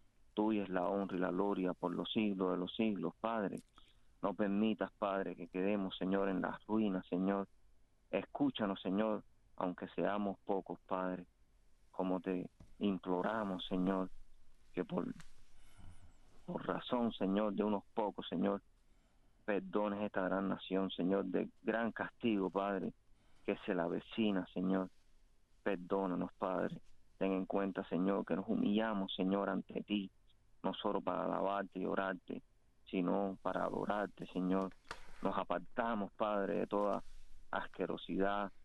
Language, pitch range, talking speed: English, 95-105 Hz, 130 wpm